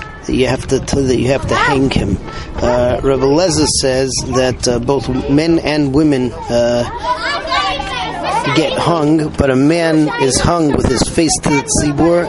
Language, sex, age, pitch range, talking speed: English, male, 30-49, 130-155 Hz, 155 wpm